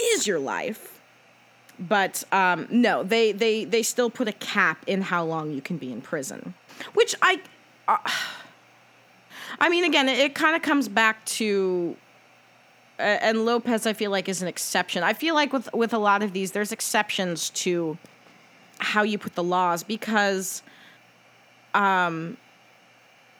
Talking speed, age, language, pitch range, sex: 160 wpm, 30-49, English, 175-225 Hz, female